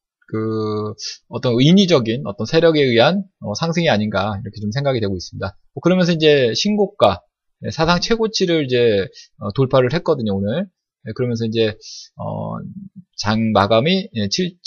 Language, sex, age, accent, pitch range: Korean, male, 20-39, native, 110-175 Hz